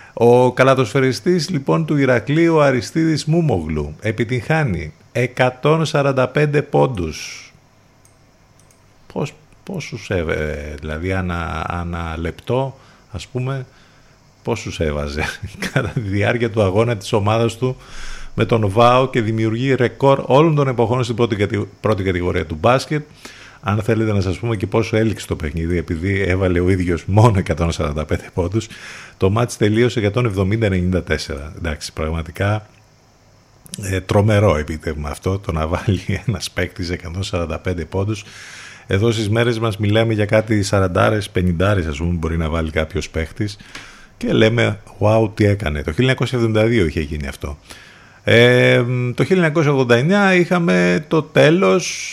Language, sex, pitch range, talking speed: Greek, male, 90-125 Hz, 120 wpm